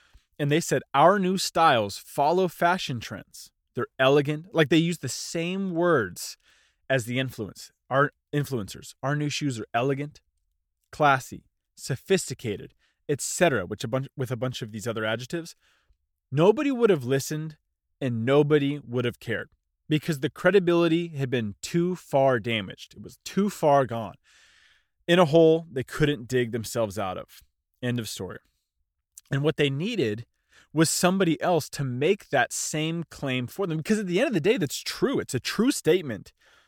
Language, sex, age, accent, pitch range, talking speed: English, male, 20-39, American, 110-160 Hz, 165 wpm